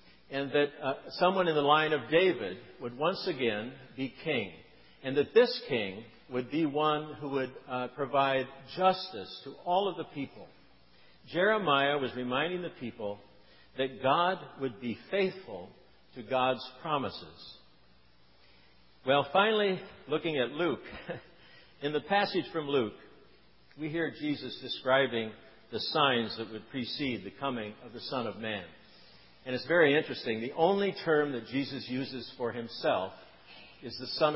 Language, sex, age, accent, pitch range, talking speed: English, male, 60-79, American, 125-160 Hz, 150 wpm